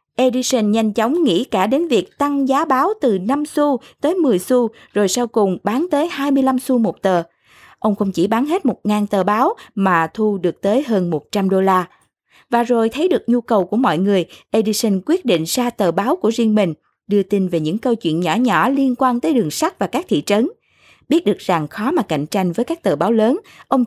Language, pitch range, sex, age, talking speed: Vietnamese, 200-265 Hz, female, 20-39, 225 wpm